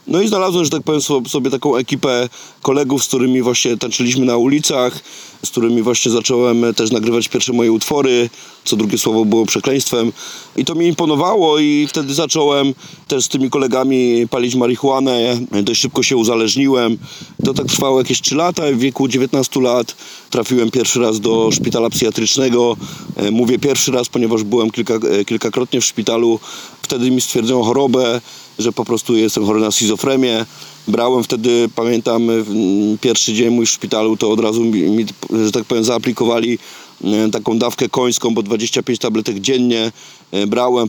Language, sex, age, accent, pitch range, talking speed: Polish, male, 30-49, native, 115-145 Hz, 160 wpm